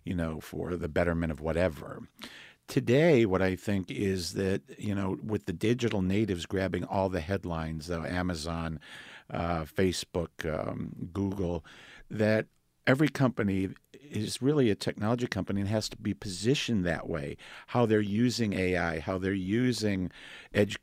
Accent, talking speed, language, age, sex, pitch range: American, 145 wpm, English, 50-69, male, 90-110 Hz